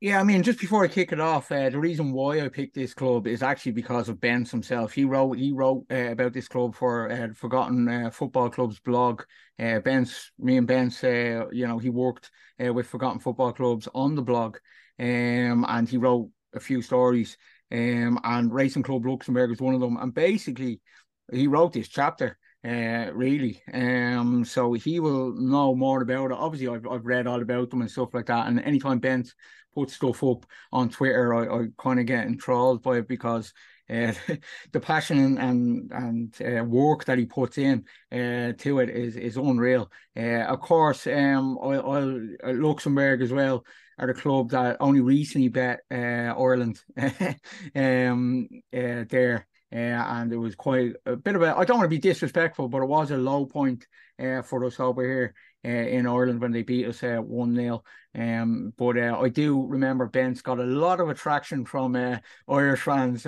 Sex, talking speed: male, 195 wpm